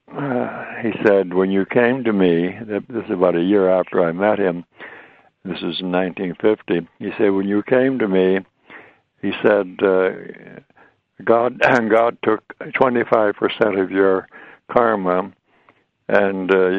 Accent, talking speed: American, 135 wpm